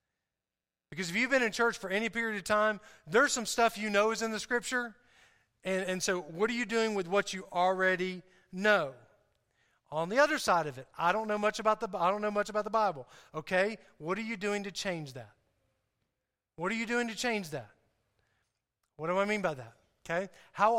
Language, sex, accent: English, male, American